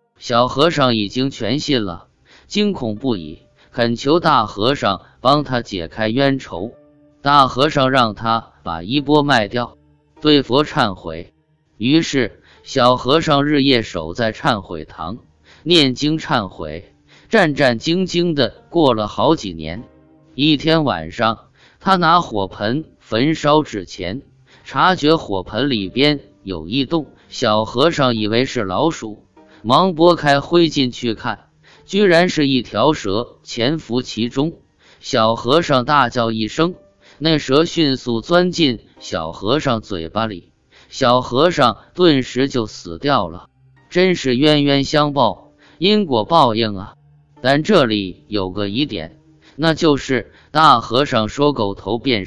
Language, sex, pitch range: Chinese, male, 105-150 Hz